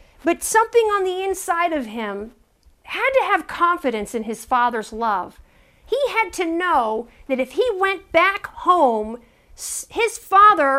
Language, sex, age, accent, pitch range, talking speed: English, female, 50-69, American, 260-365 Hz, 150 wpm